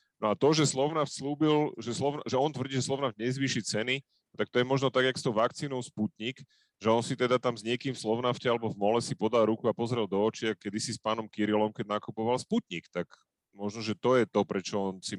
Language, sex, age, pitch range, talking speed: Slovak, male, 30-49, 95-120 Hz, 240 wpm